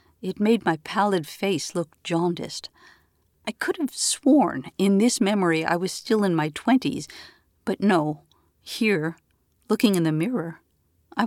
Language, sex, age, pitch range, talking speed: English, female, 50-69, 155-200 Hz, 150 wpm